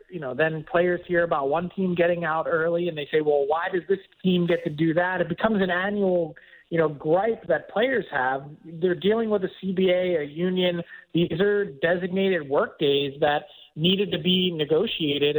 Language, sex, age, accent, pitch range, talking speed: English, male, 30-49, American, 155-185 Hz, 195 wpm